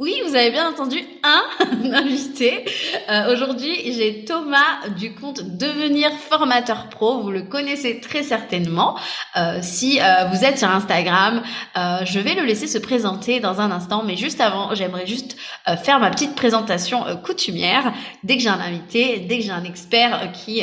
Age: 20-39